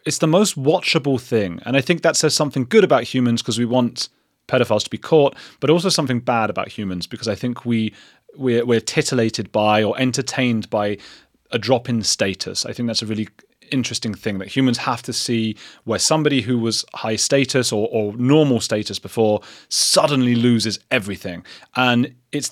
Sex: male